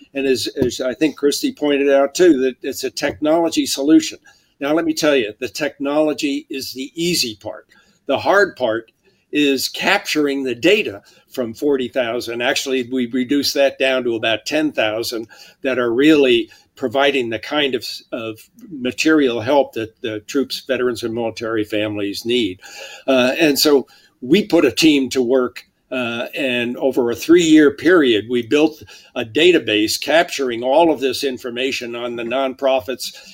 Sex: male